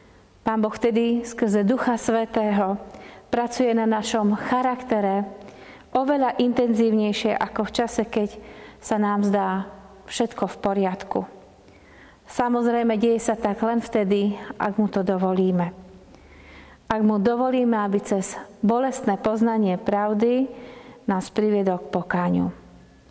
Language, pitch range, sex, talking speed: Slovak, 200-235 Hz, female, 110 wpm